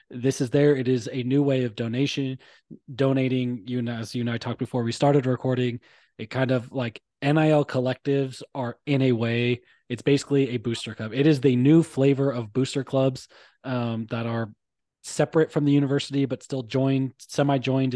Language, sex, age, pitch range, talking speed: English, male, 20-39, 125-140 Hz, 185 wpm